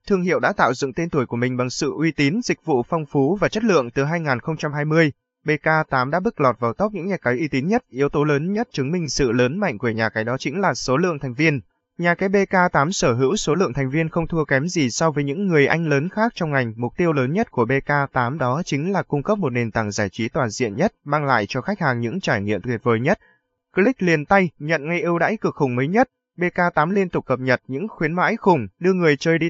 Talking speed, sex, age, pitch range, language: 260 wpm, male, 20-39, 130-175 Hz, Vietnamese